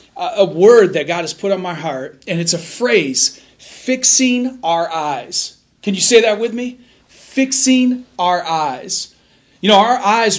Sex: male